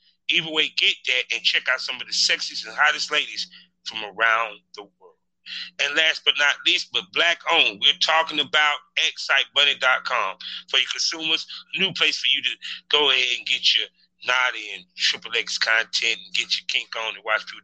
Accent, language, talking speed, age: American, English, 190 wpm, 30-49